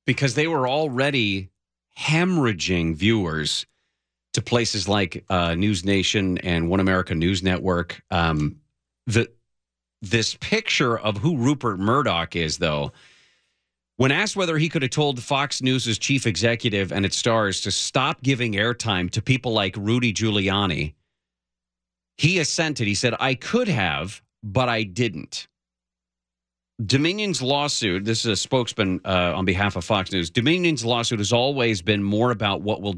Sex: male